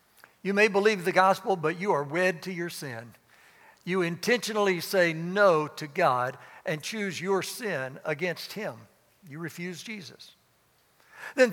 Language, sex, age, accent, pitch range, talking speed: English, male, 60-79, American, 145-190 Hz, 145 wpm